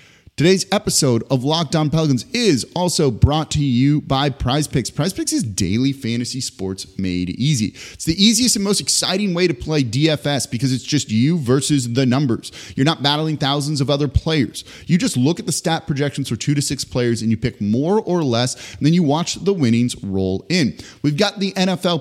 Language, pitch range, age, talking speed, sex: English, 125-165 Hz, 30-49, 200 wpm, male